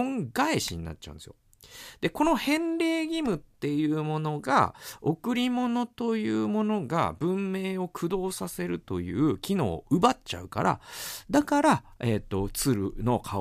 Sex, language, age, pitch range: male, Japanese, 40-59, 95-160 Hz